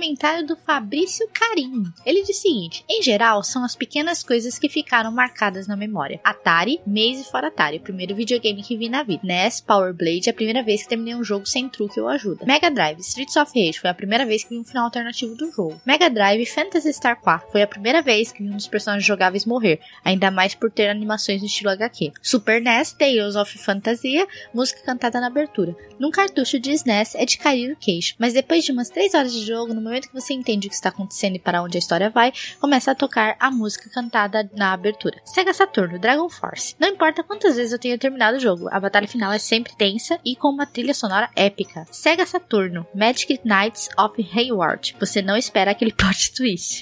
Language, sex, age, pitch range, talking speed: Portuguese, female, 10-29, 205-280 Hz, 215 wpm